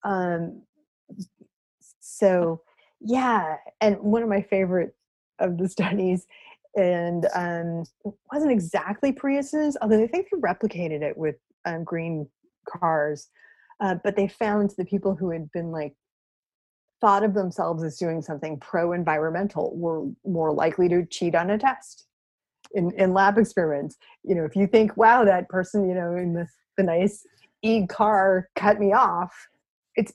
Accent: American